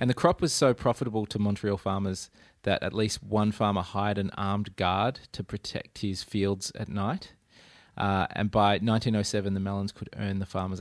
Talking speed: 190 wpm